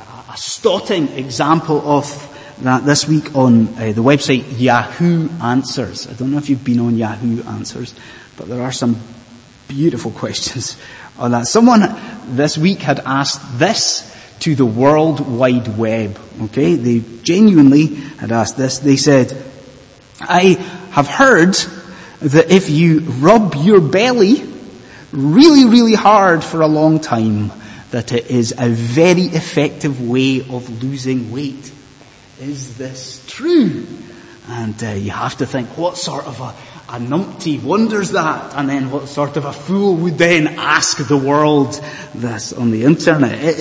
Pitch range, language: 125-175 Hz, English